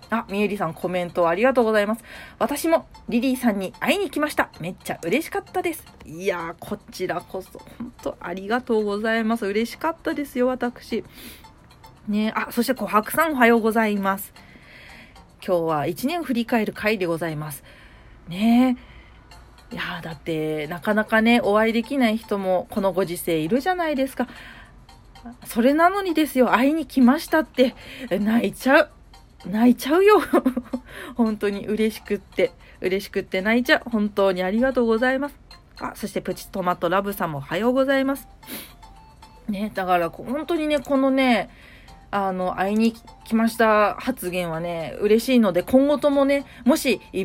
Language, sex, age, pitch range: Japanese, female, 30-49, 195-265 Hz